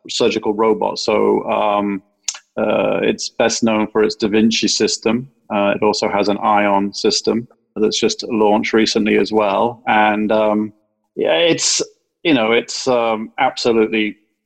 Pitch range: 100-115 Hz